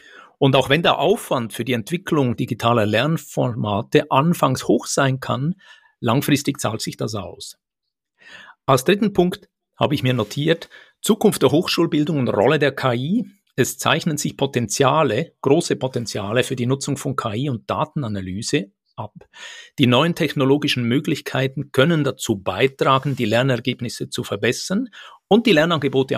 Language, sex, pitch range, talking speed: German, male, 120-155 Hz, 140 wpm